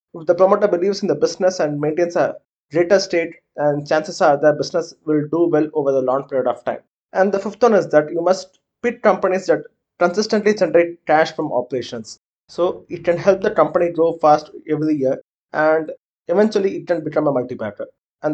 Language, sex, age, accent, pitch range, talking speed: English, male, 20-39, Indian, 150-180 Hz, 195 wpm